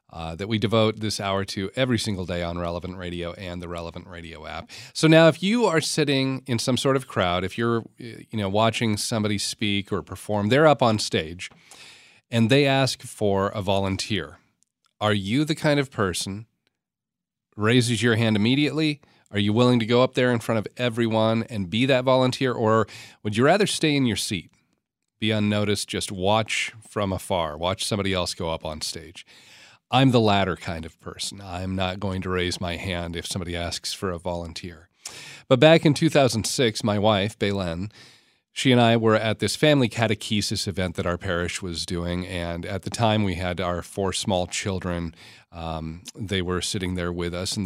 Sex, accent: male, American